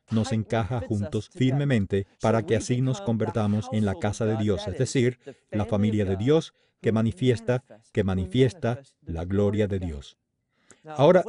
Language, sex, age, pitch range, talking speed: English, male, 40-59, 105-135 Hz, 155 wpm